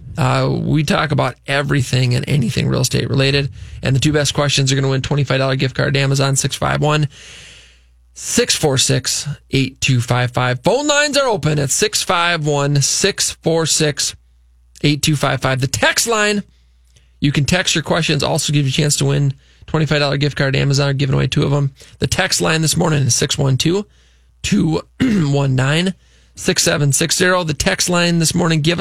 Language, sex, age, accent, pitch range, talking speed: English, male, 20-39, American, 135-160 Hz, 150 wpm